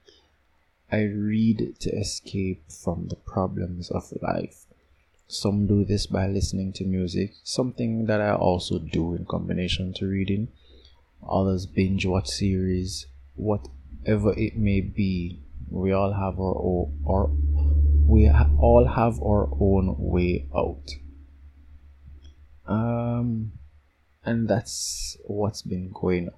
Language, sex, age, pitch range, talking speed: English, male, 20-39, 85-100 Hz, 115 wpm